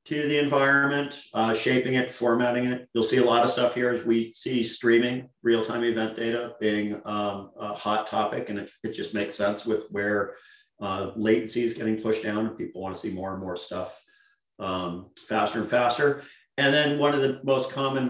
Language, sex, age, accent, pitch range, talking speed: English, male, 40-59, American, 110-140 Hz, 200 wpm